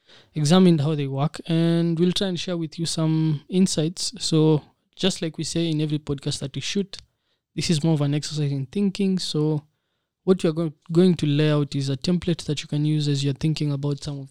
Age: 20-39